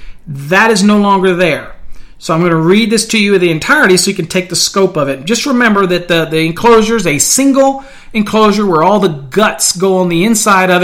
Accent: American